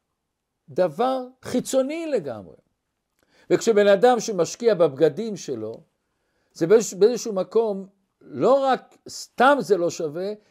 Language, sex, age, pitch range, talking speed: Hebrew, male, 60-79, 180-255 Hz, 95 wpm